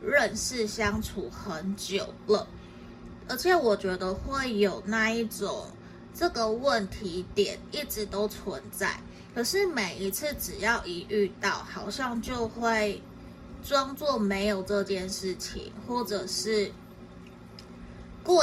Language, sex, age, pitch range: Chinese, female, 20-39, 195-235 Hz